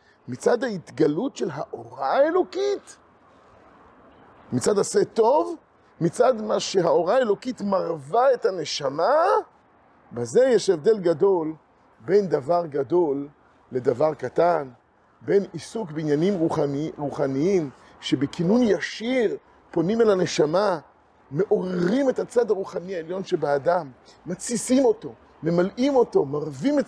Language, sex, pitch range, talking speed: Hebrew, male, 165-230 Hz, 105 wpm